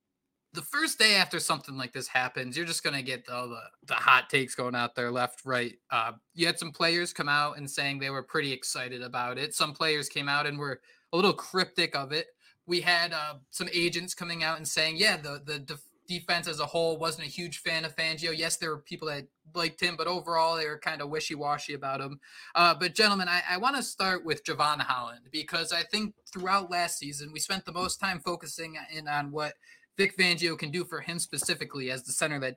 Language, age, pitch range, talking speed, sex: English, 20-39, 145-180 Hz, 230 wpm, male